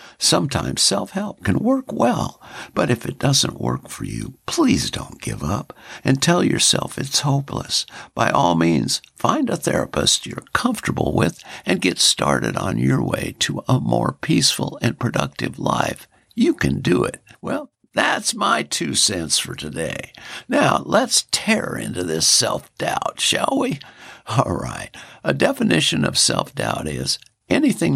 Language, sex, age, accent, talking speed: English, male, 60-79, American, 150 wpm